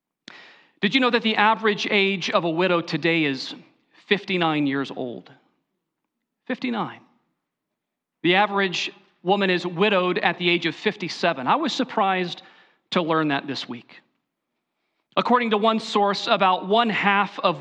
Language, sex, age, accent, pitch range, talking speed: English, male, 40-59, American, 175-215 Hz, 145 wpm